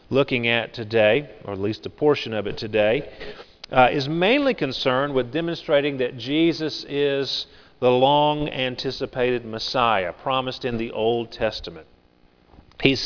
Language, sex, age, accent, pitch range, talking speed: English, male, 40-59, American, 120-155 Hz, 140 wpm